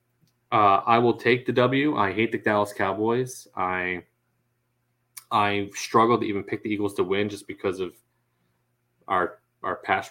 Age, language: 20-39, English